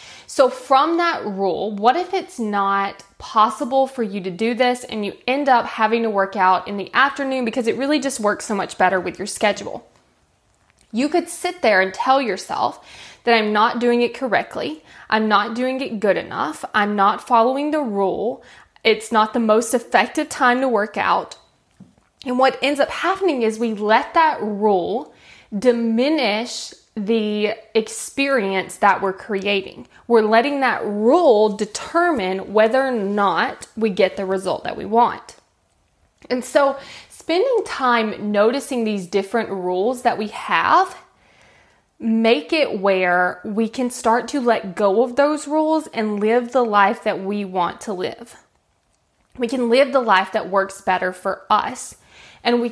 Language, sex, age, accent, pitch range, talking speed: English, female, 10-29, American, 205-265 Hz, 165 wpm